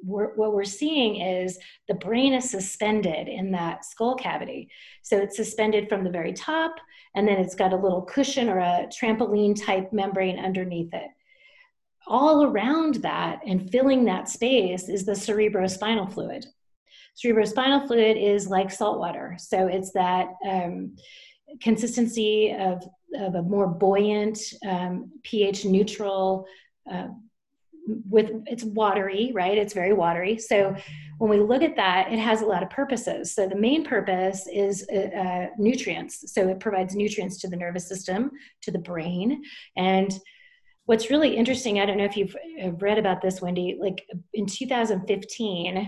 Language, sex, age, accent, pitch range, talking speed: English, female, 30-49, American, 190-230 Hz, 155 wpm